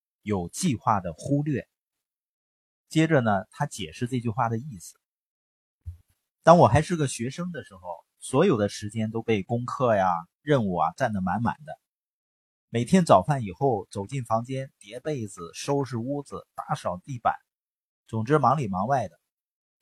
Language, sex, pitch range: Chinese, male, 100-145 Hz